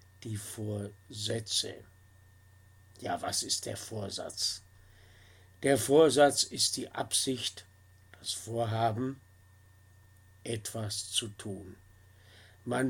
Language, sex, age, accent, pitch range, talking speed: German, male, 60-79, German, 95-120 Hz, 85 wpm